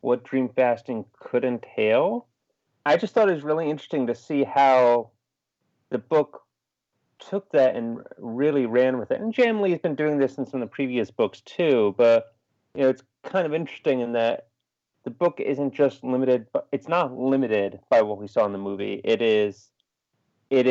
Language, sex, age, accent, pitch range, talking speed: English, male, 30-49, American, 110-135 Hz, 190 wpm